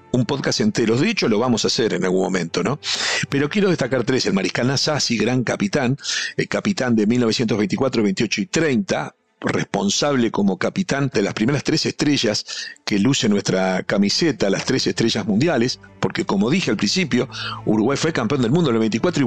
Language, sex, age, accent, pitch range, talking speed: Spanish, male, 50-69, Argentinian, 115-150 Hz, 185 wpm